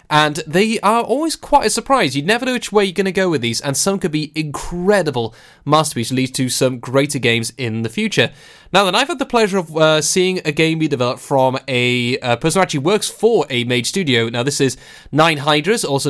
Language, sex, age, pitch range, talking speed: English, male, 20-39, 130-175 Hz, 235 wpm